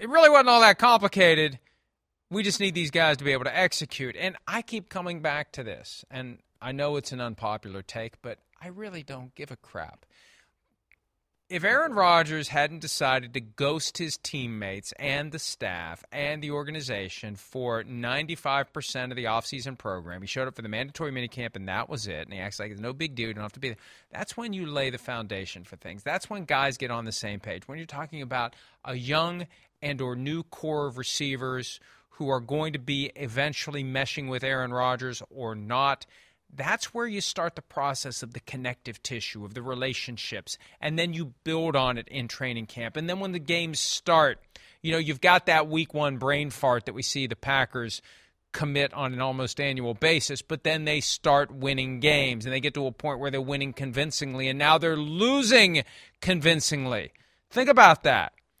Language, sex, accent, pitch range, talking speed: English, male, American, 125-155 Hz, 200 wpm